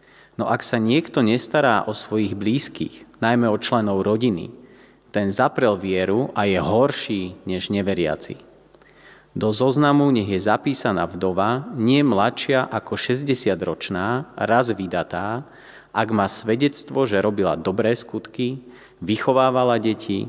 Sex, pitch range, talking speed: male, 100-125 Hz, 120 wpm